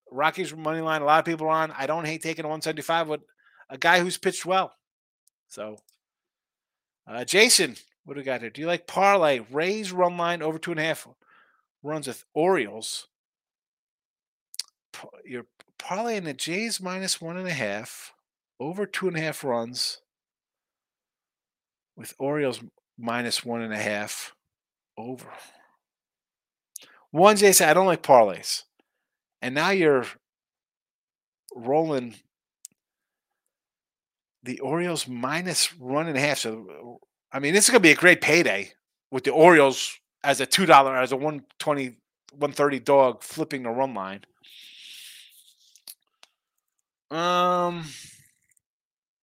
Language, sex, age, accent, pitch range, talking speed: English, male, 50-69, American, 130-175 Hz, 135 wpm